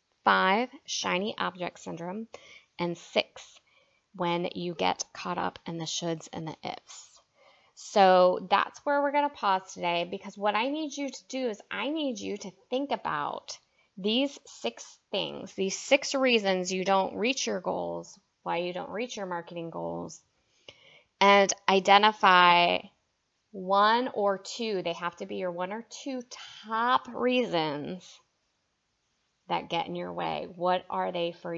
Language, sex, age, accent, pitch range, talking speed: English, female, 20-39, American, 180-235 Hz, 155 wpm